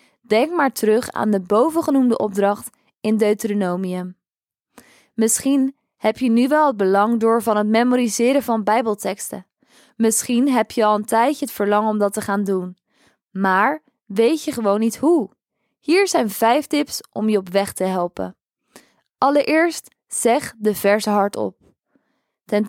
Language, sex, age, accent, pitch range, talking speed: Dutch, female, 20-39, Dutch, 205-265 Hz, 150 wpm